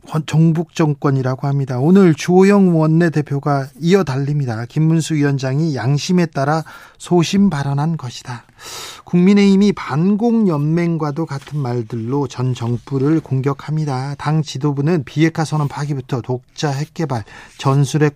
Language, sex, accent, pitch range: Korean, male, native, 140-180 Hz